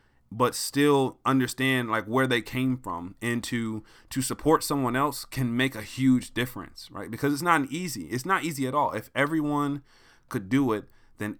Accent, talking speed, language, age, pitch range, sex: American, 190 wpm, English, 20-39, 115-140 Hz, male